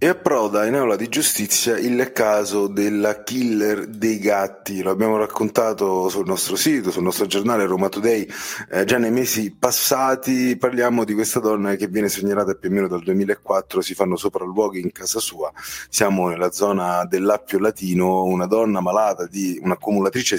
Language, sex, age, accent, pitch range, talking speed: Italian, male, 30-49, native, 95-110 Hz, 165 wpm